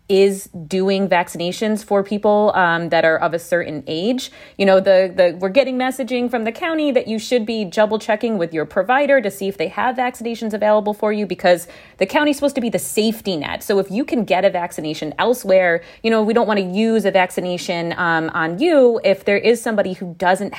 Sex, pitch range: female, 170-225 Hz